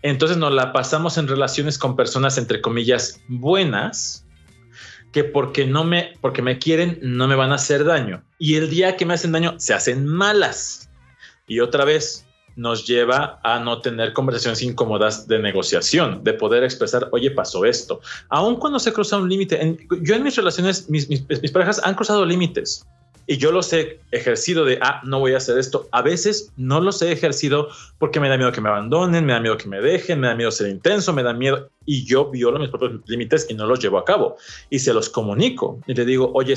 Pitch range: 125-175 Hz